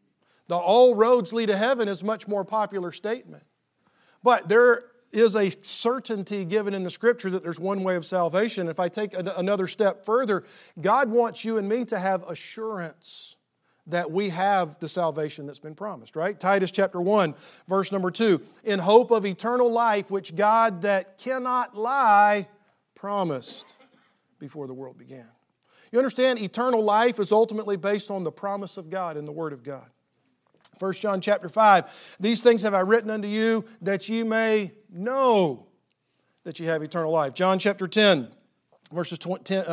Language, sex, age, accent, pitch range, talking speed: English, male, 40-59, American, 175-220 Hz, 170 wpm